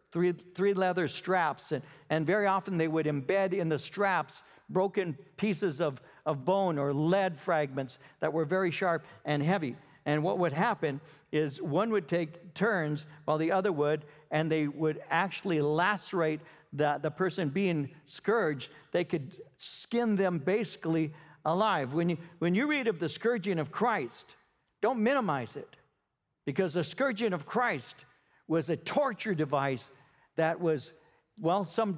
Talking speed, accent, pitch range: 155 wpm, American, 150-190 Hz